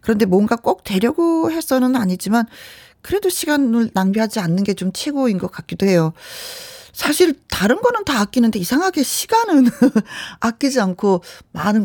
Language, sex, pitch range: Korean, female, 185-290 Hz